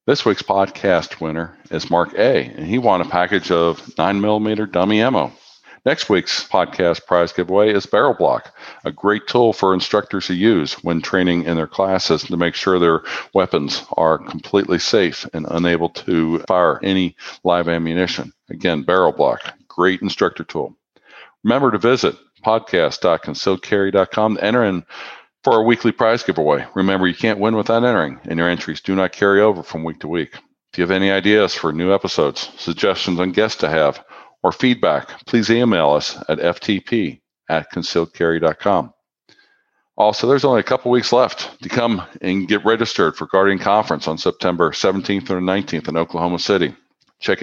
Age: 50-69